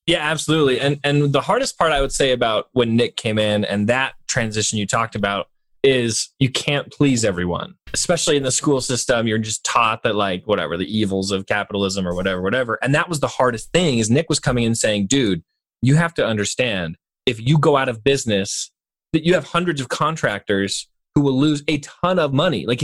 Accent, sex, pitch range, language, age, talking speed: American, male, 115-170 Hz, English, 20-39, 215 wpm